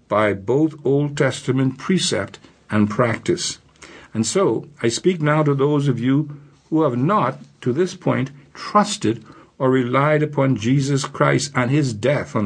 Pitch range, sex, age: 115-150 Hz, male, 60-79